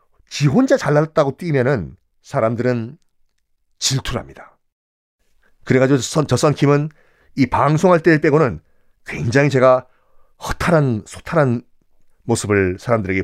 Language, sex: Korean, male